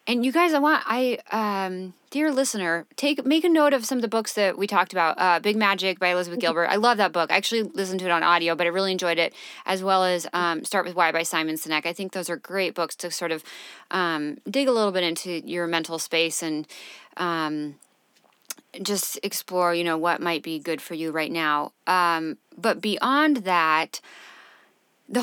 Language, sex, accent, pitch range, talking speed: English, female, American, 170-215 Hz, 215 wpm